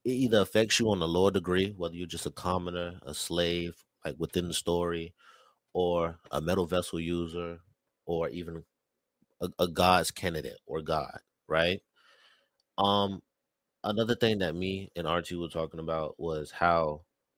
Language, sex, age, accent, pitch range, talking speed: English, male, 30-49, American, 85-95 Hz, 155 wpm